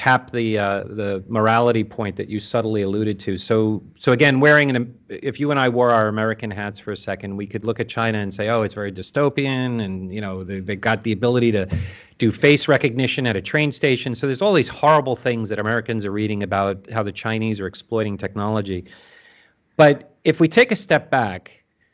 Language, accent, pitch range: English, American, 105-140 Hz